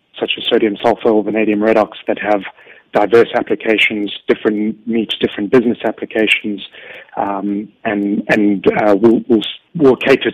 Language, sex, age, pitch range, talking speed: English, male, 30-49, 105-115 Hz, 135 wpm